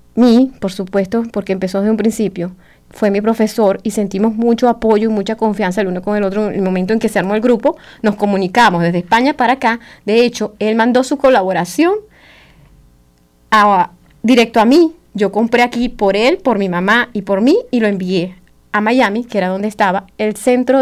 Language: English